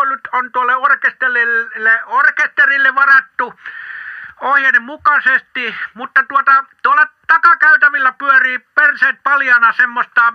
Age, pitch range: 60-79, 245-315 Hz